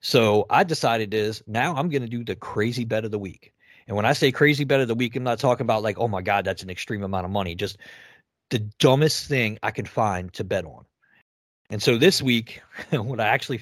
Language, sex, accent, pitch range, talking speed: English, male, American, 105-130 Hz, 240 wpm